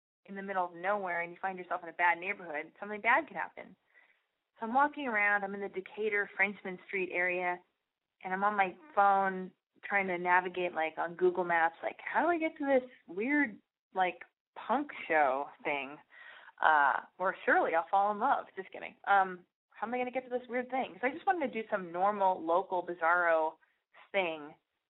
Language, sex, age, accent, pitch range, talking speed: English, female, 20-39, American, 175-215 Hz, 200 wpm